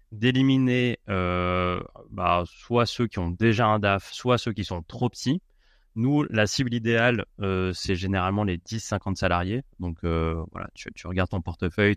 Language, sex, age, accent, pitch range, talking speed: French, male, 20-39, French, 85-110 Hz, 175 wpm